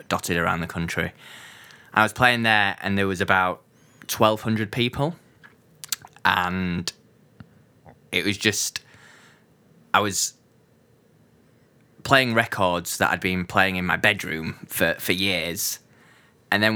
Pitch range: 95-115 Hz